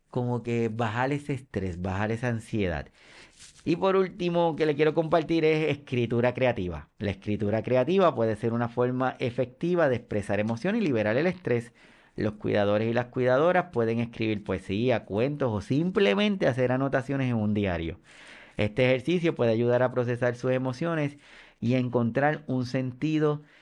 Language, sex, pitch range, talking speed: Spanish, male, 115-150 Hz, 160 wpm